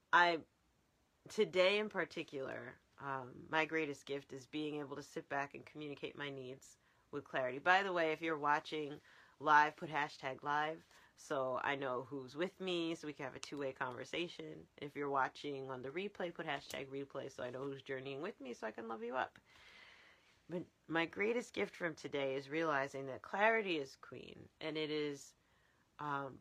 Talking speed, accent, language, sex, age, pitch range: 180 wpm, American, English, female, 30-49, 135-160 Hz